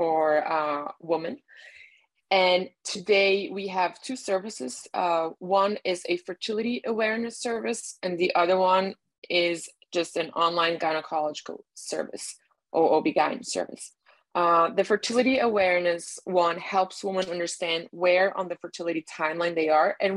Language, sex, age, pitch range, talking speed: English, female, 20-39, 165-190 Hz, 135 wpm